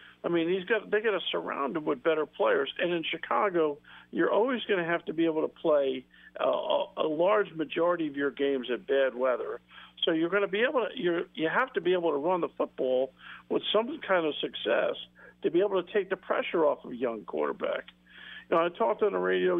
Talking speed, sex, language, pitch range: 235 wpm, male, English, 145-195 Hz